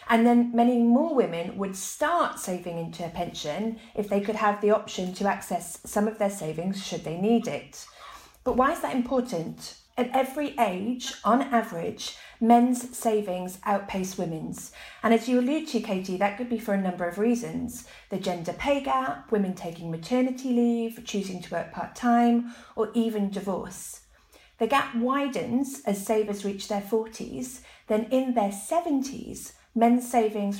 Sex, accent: female, British